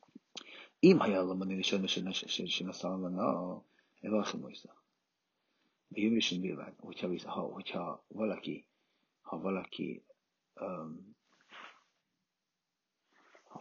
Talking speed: 95 wpm